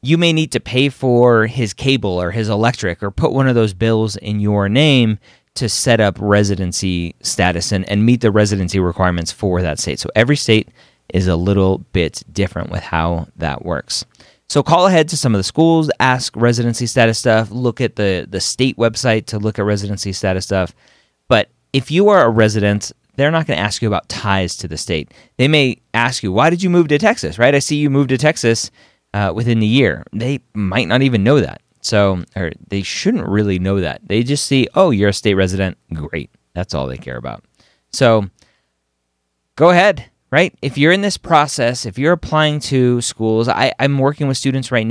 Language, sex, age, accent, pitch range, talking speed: English, male, 30-49, American, 100-135 Hz, 205 wpm